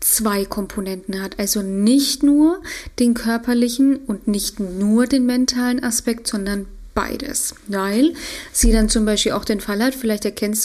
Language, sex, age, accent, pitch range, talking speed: German, female, 30-49, German, 205-240 Hz, 150 wpm